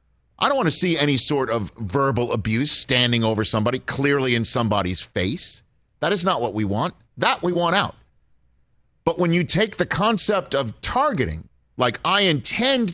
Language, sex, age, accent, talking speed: English, male, 50-69, American, 175 wpm